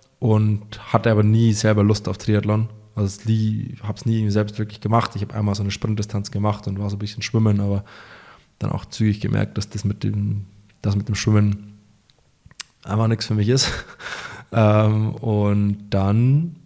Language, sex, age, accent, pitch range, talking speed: German, male, 20-39, German, 105-115 Hz, 185 wpm